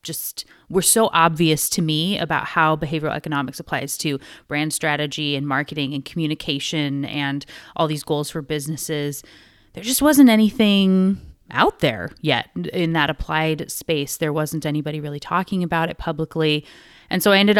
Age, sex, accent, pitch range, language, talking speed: 30-49, female, American, 150-180 Hz, English, 160 wpm